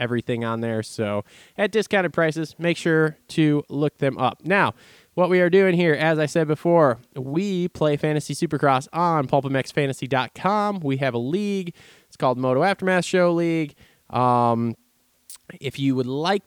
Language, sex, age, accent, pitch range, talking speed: English, male, 20-39, American, 125-155 Hz, 160 wpm